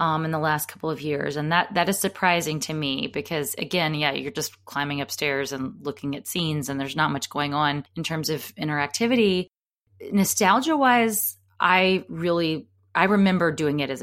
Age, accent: 20-39, American